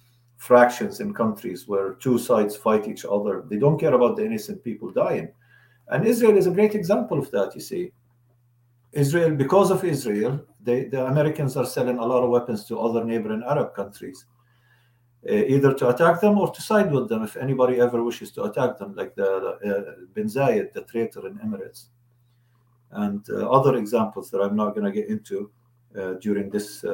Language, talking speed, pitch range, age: English, 190 wpm, 120-185 Hz, 50-69